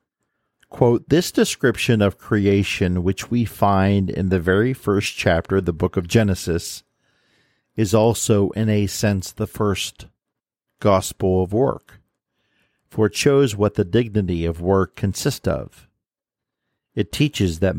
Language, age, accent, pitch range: English, 50-69, American, 95-105 Hz